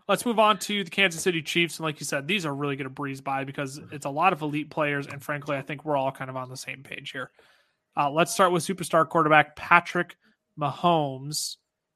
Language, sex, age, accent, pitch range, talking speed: English, male, 30-49, American, 145-205 Hz, 235 wpm